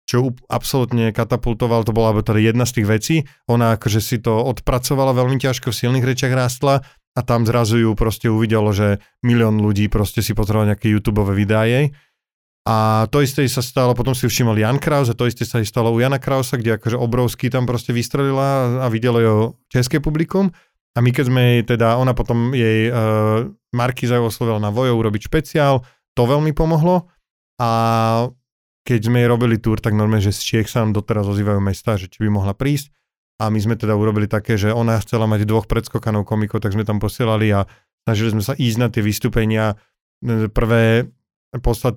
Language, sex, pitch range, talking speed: Slovak, male, 110-130 Hz, 190 wpm